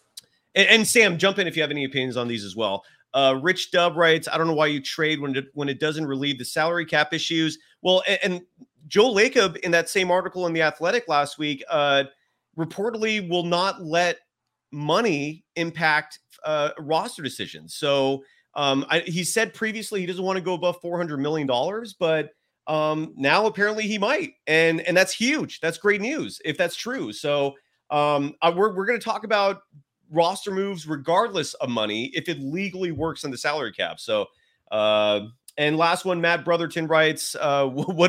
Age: 30-49